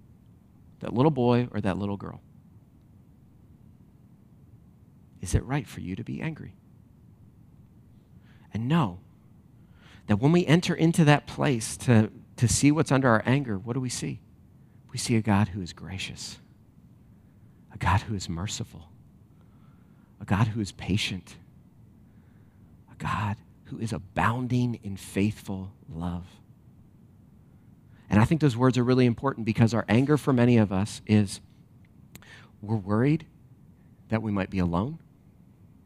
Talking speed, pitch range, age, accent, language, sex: 140 wpm, 105-125 Hz, 40-59, American, English, male